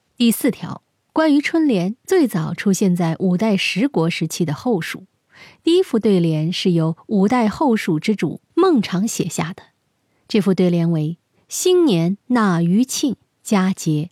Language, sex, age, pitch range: Chinese, female, 20-39, 175-235 Hz